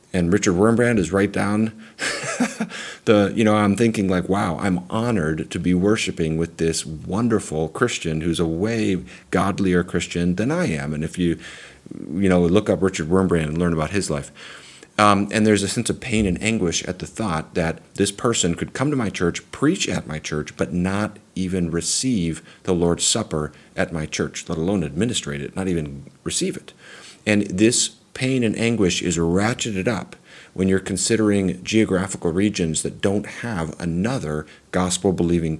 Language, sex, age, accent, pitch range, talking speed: English, male, 40-59, American, 85-105 Hz, 175 wpm